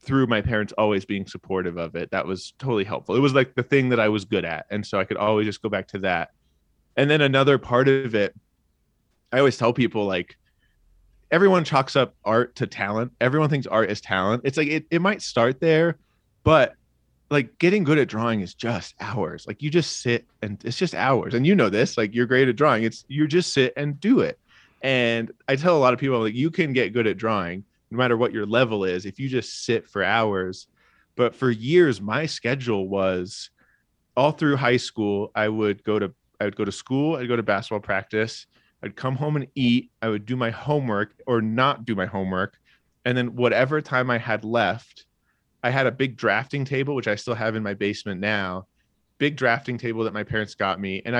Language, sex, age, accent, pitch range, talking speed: English, male, 20-39, American, 105-135 Hz, 220 wpm